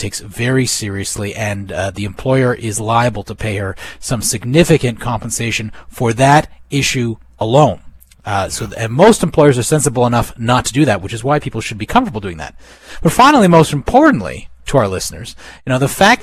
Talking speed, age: 190 wpm, 30-49